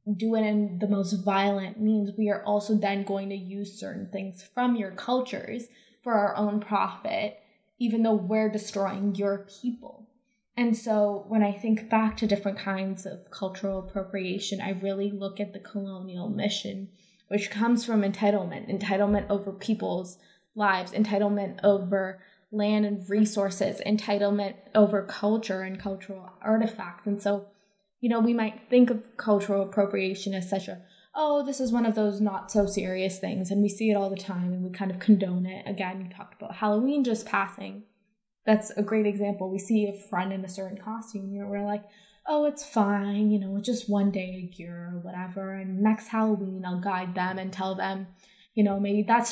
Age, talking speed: 10-29, 185 wpm